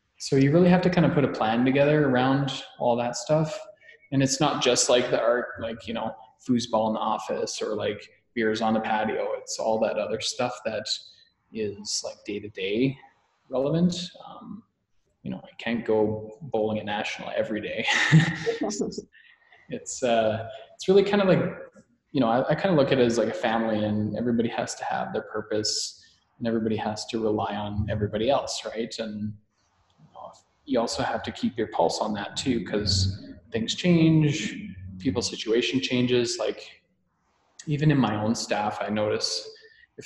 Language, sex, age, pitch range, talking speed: English, male, 20-39, 105-150 Hz, 175 wpm